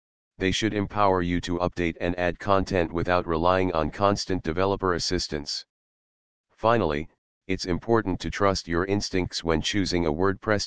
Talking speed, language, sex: 145 wpm, English, male